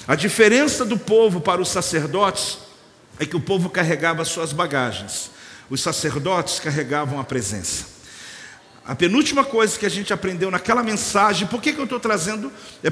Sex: male